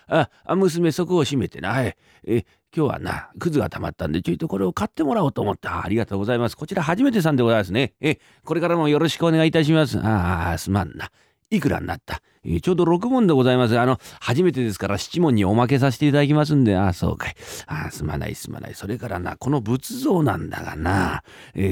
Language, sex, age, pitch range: Japanese, male, 40-59, 95-140 Hz